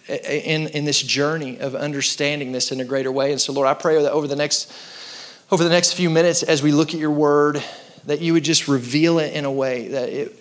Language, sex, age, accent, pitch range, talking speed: English, male, 30-49, American, 135-155 Hz, 240 wpm